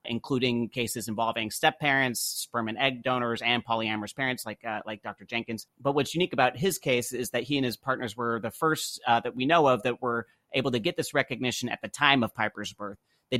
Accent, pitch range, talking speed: American, 110-130 Hz, 230 wpm